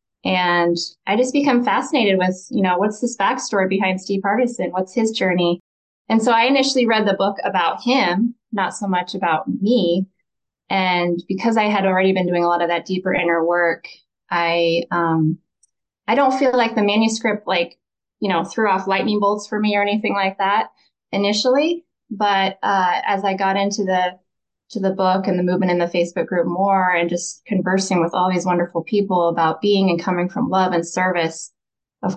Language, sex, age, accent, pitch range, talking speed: English, female, 20-39, American, 175-205 Hz, 190 wpm